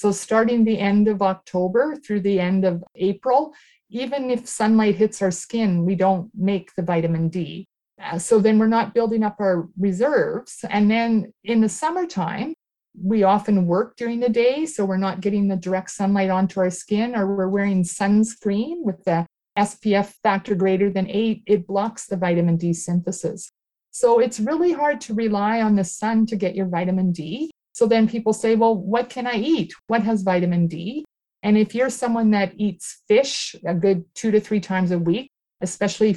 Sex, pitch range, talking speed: female, 185-230 Hz, 185 wpm